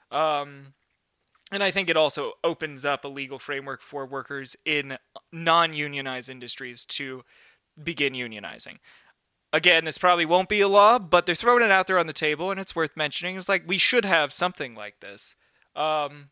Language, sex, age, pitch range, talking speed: English, male, 20-39, 145-175 Hz, 175 wpm